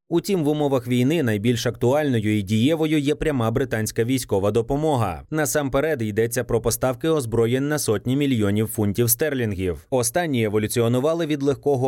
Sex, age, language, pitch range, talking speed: male, 30-49, Ukrainian, 115-145 Hz, 135 wpm